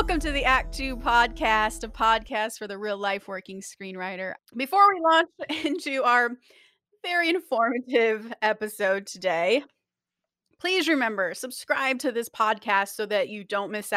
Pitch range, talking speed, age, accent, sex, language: 205-245 Hz, 145 wpm, 30-49, American, female, English